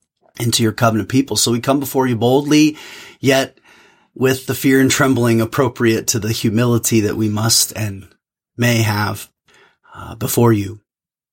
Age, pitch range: 30-49, 105-125 Hz